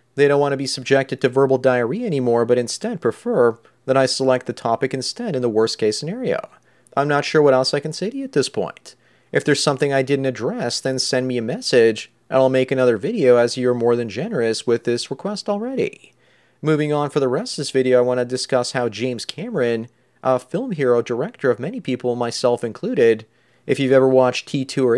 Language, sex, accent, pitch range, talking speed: English, male, American, 120-140 Hz, 220 wpm